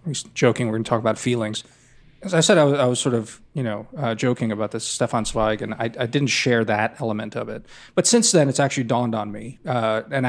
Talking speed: 250 wpm